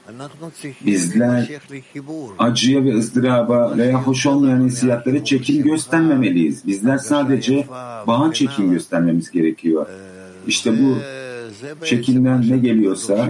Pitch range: 105-135 Hz